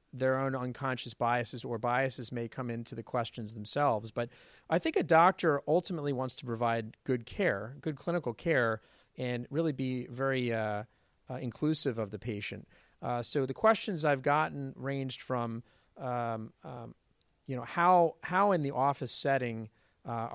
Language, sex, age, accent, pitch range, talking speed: English, male, 40-59, American, 115-140 Hz, 160 wpm